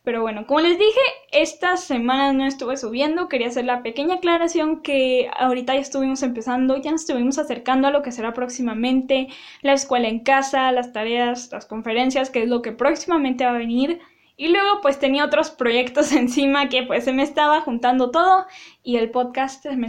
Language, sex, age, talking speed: Spanish, female, 10-29, 190 wpm